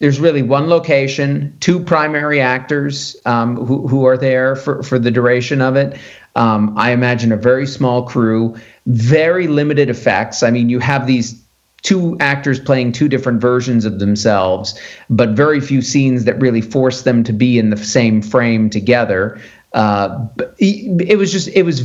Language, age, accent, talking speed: English, 40-59, American, 170 wpm